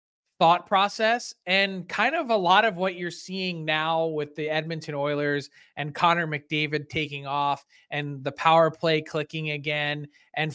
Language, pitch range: English, 155-190 Hz